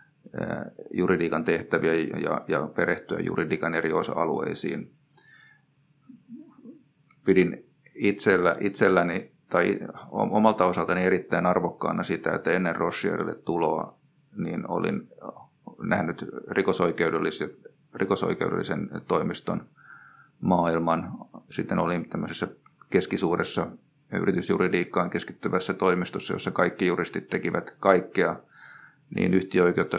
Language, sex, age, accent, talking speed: Finnish, male, 30-49, native, 85 wpm